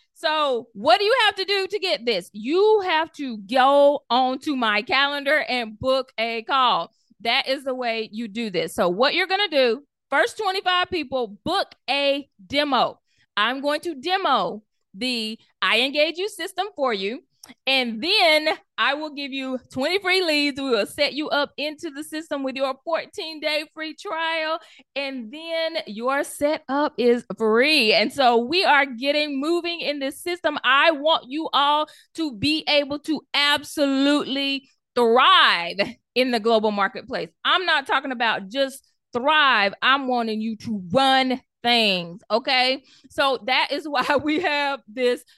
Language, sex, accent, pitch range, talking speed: English, female, American, 240-315 Hz, 165 wpm